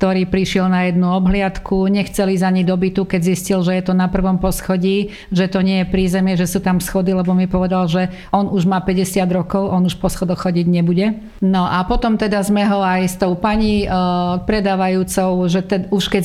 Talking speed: 205 wpm